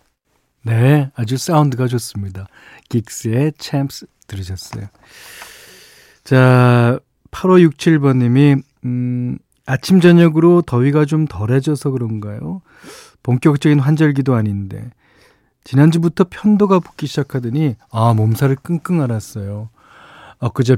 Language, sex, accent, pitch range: Korean, male, native, 110-150 Hz